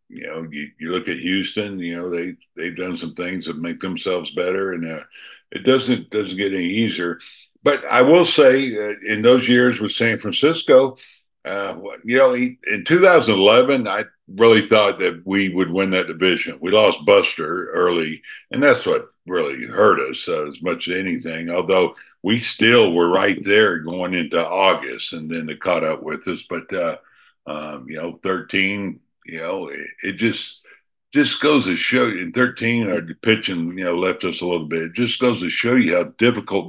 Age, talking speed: 60-79, 190 wpm